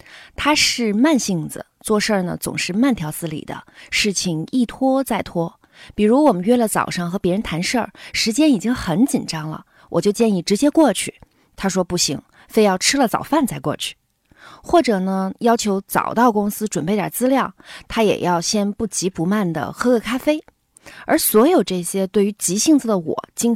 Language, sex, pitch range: Chinese, female, 175-255 Hz